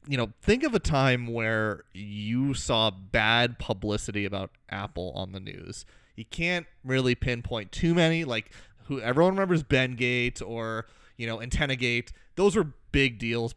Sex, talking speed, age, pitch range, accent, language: male, 165 wpm, 30-49, 110-130 Hz, American, English